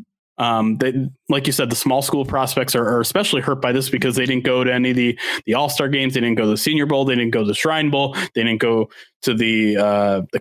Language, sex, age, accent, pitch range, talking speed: English, male, 20-39, American, 125-150 Hz, 265 wpm